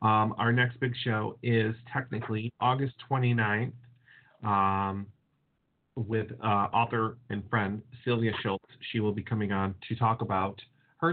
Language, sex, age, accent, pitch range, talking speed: English, male, 40-59, American, 110-135 Hz, 140 wpm